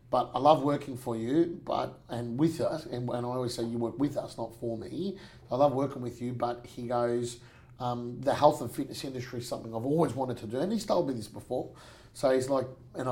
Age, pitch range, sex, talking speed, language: 30-49, 120-145 Hz, male, 245 wpm, English